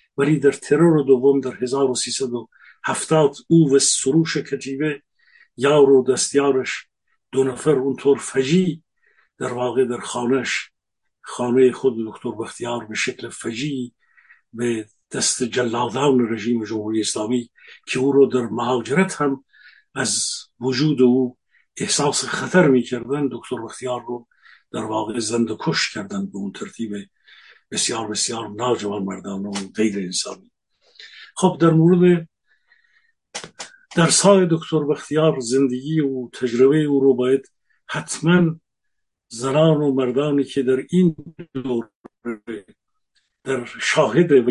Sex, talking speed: male, 120 wpm